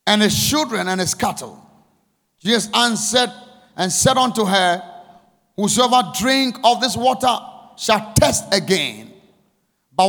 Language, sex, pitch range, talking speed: English, male, 195-255 Hz, 125 wpm